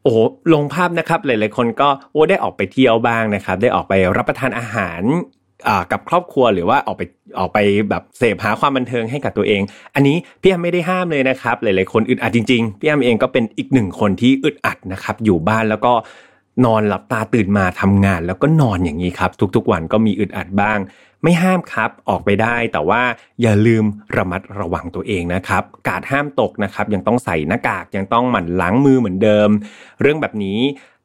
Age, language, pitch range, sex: 30-49, Thai, 95-130 Hz, male